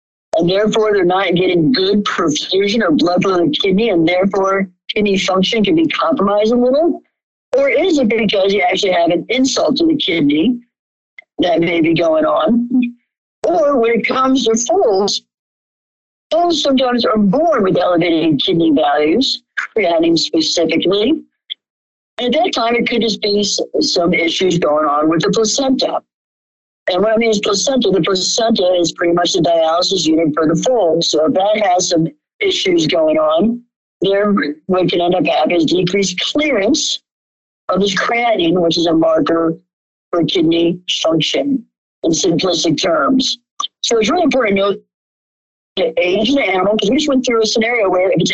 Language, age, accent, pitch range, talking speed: English, 60-79, American, 175-260 Hz, 170 wpm